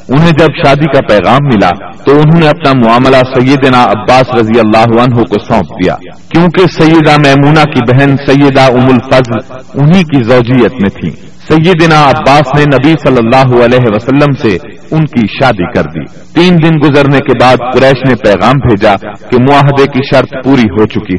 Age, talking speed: 40-59, 175 wpm